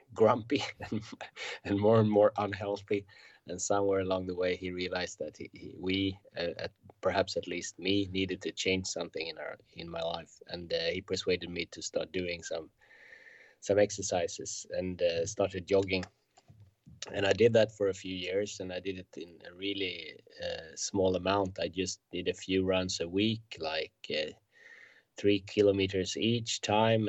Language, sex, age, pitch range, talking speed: English, male, 20-39, 95-105 Hz, 175 wpm